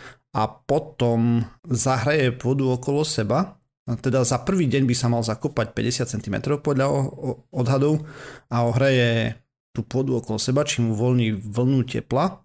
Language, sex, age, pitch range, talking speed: Slovak, male, 30-49, 110-130 Hz, 140 wpm